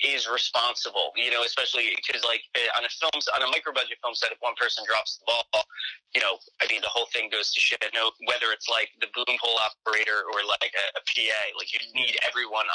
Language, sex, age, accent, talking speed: English, male, 30-49, American, 240 wpm